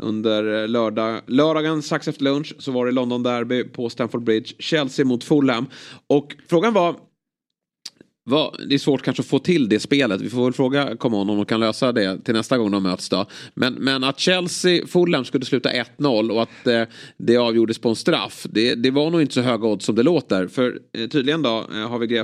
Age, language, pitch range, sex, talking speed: 30-49, Swedish, 110-145 Hz, male, 200 wpm